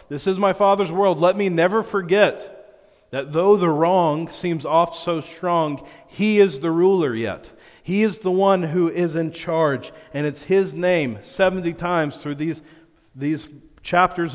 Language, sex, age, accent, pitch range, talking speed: English, male, 40-59, American, 120-165 Hz, 165 wpm